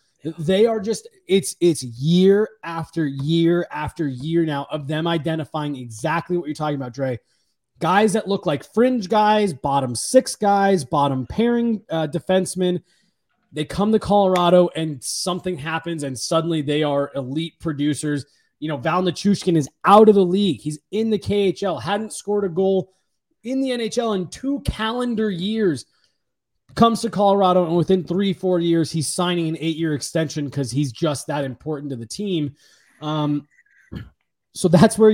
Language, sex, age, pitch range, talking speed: English, male, 20-39, 150-195 Hz, 160 wpm